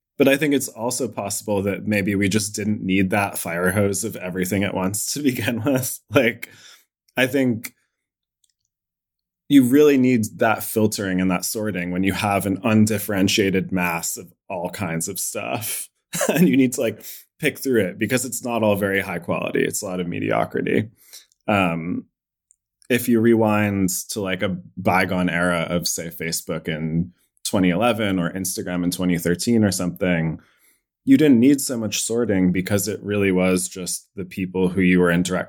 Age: 20-39